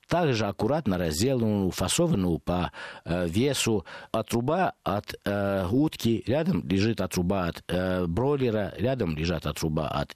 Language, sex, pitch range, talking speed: Russian, male, 95-125 Hz, 140 wpm